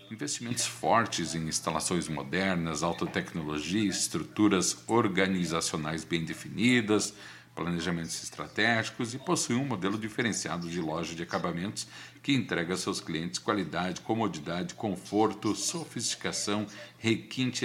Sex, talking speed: male, 105 wpm